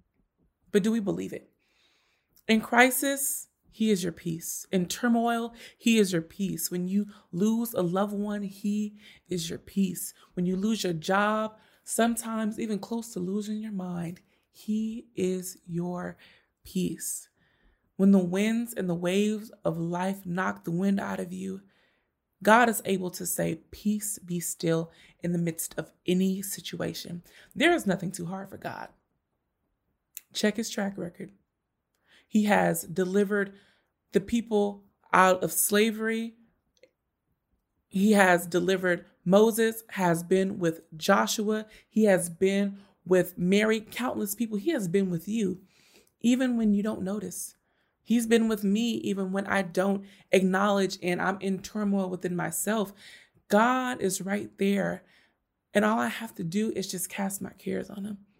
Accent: American